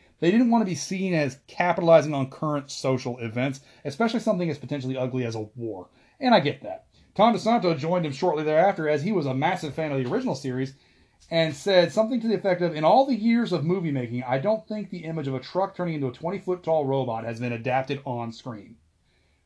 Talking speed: 220 wpm